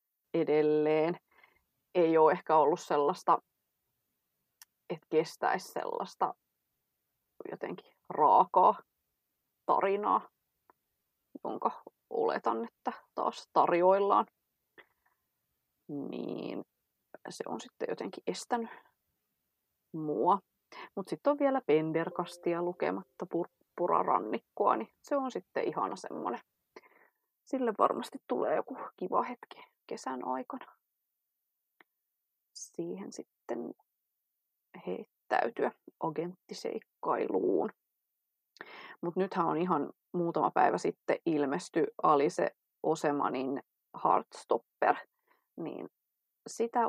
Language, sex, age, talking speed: English, female, 30-49, 80 wpm